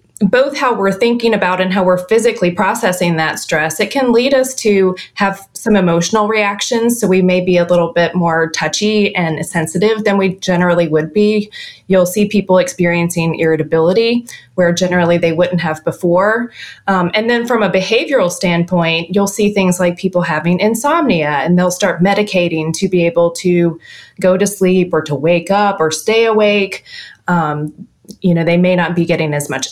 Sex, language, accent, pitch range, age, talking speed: female, English, American, 165-200 Hz, 20-39, 180 wpm